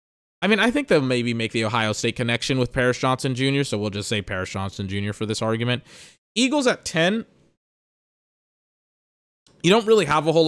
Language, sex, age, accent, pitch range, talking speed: English, male, 20-39, American, 115-155 Hz, 195 wpm